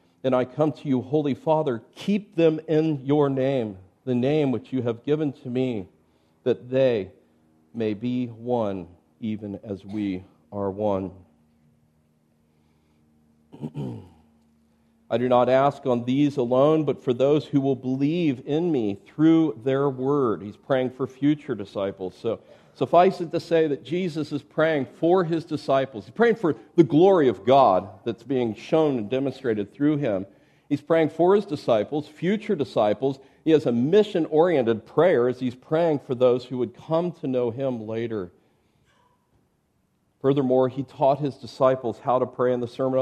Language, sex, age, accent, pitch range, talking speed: English, male, 50-69, American, 110-150 Hz, 160 wpm